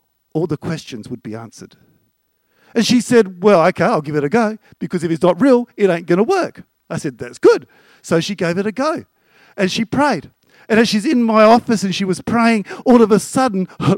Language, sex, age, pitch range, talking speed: English, male, 50-69, 145-220 Hz, 230 wpm